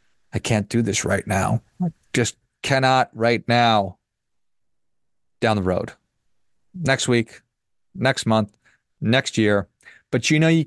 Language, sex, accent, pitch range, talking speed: English, male, American, 105-130 Hz, 130 wpm